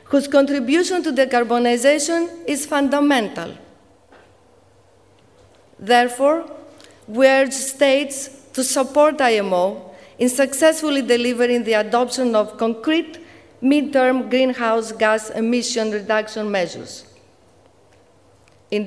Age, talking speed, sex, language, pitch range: 40-59, 90 wpm, female, English, 230-280 Hz